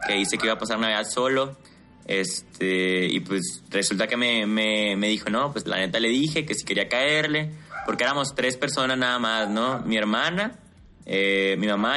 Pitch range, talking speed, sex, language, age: 100-120 Hz, 195 wpm, male, Spanish, 20-39